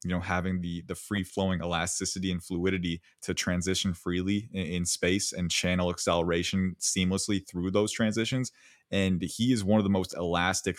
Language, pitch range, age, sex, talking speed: English, 85-95 Hz, 20-39, male, 170 wpm